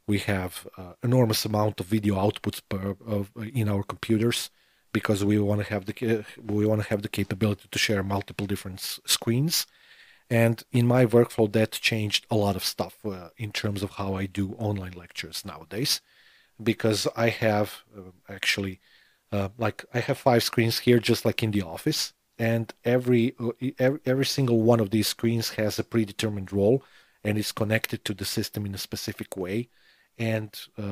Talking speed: 170 wpm